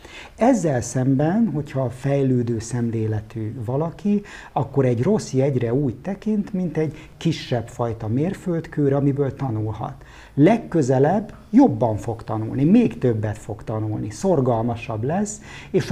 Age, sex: 50-69, male